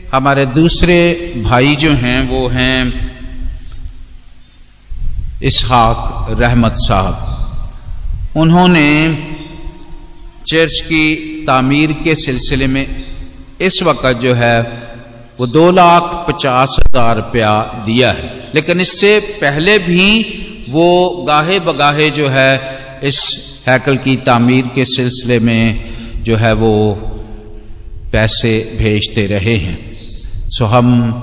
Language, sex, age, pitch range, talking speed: Hindi, male, 50-69, 115-155 Hz, 100 wpm